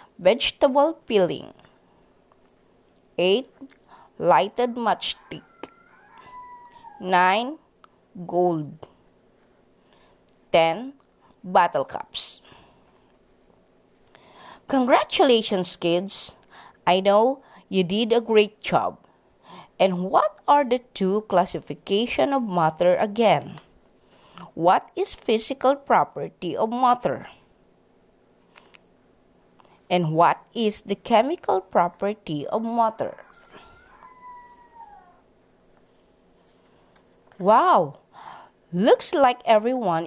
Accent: Filipino